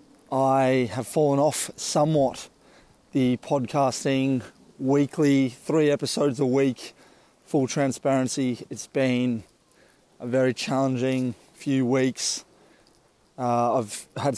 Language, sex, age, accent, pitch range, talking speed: English, male, 20-39, Australian, 130-145 Hz, 100 wpm